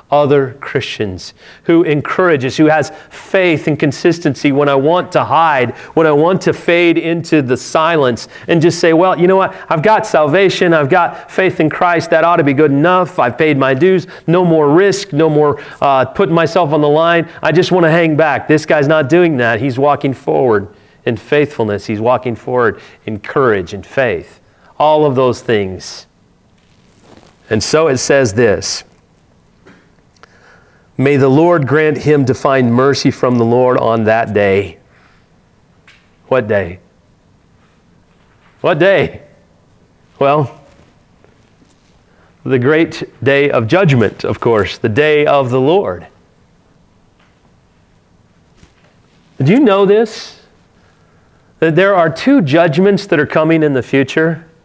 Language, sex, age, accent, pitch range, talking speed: English, male, 40-59, American, 130-170 Hz, 150 wpm